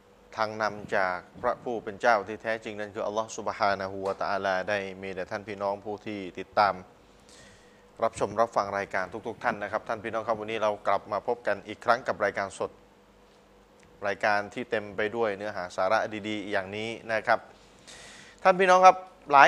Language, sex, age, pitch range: Thai, male, 20-39, 110-160 Hz